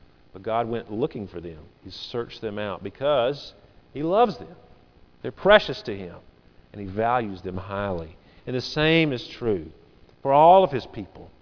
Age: 40-59